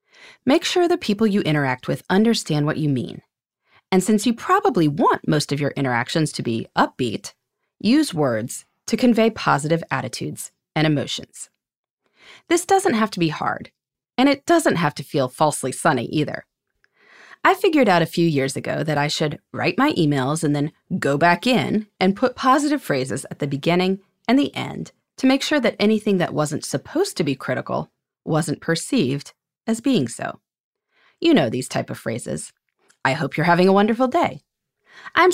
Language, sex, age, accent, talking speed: English, female, 30-49, American, 175 wpm